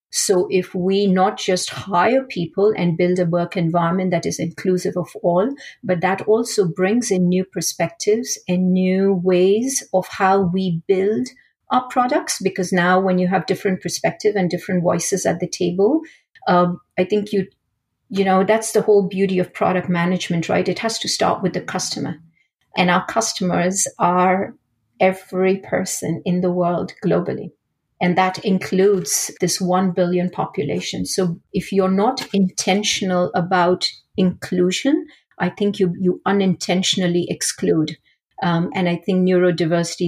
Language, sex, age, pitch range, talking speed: English, female, 50-69, 170-190 Hz, 155 wpm